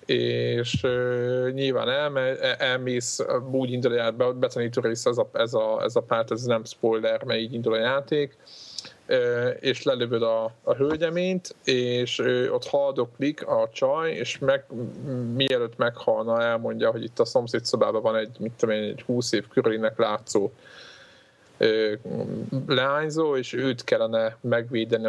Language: Hungarian